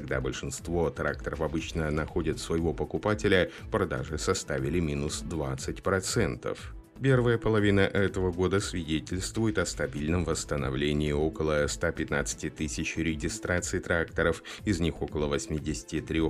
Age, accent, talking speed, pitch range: 30-49, native, 105 wpm, 75-90 Hz